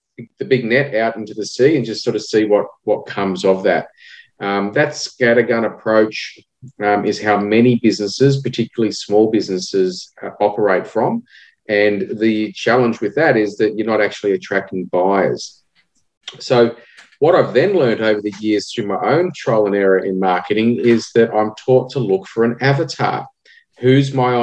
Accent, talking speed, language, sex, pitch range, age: Australian, 175 wpm, English, male, 105-130 Hz, 40-59